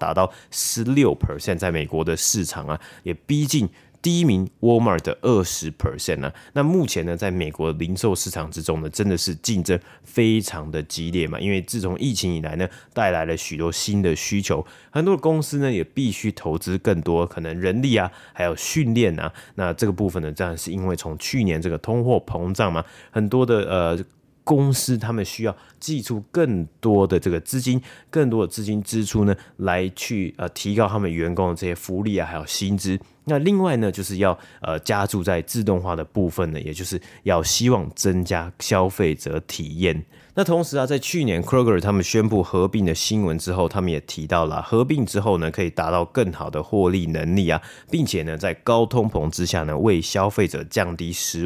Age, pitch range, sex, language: 30-49, 85-115 Hz, male, Chinese